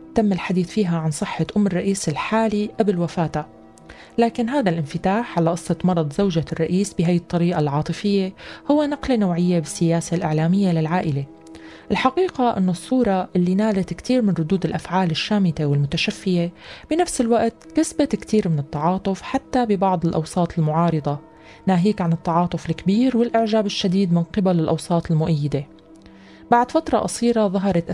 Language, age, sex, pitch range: Arabic, 30-49, female, 165-215 Hz